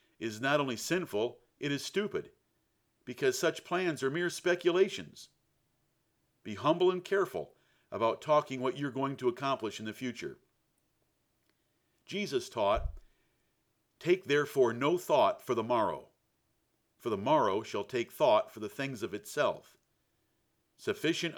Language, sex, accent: English, male, American